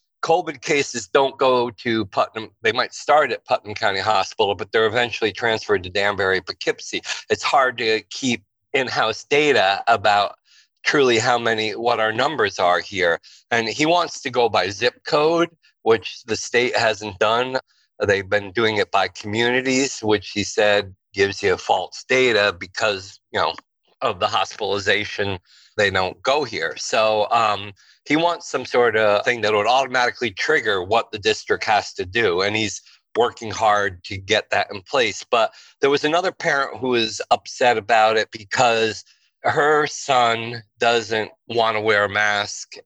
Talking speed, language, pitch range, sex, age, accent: 165 wpm, English, 100-125 Hz, male, 40-59, American